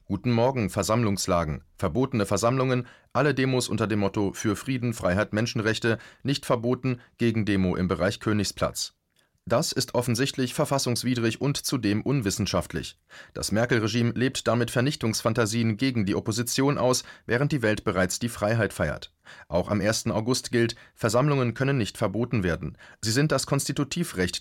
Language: German